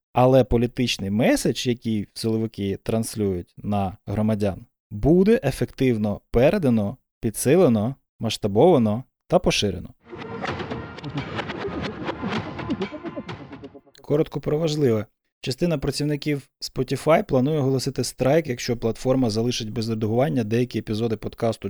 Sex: male